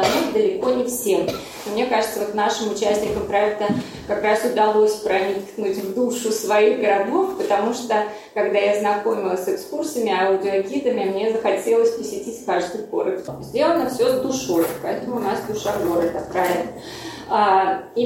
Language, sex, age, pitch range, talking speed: Russian, female, 20-39, 210-270 Hz, 135 wpm